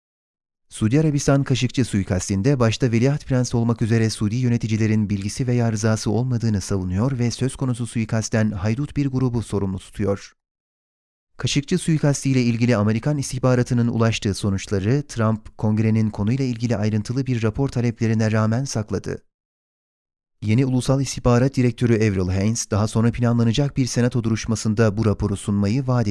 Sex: male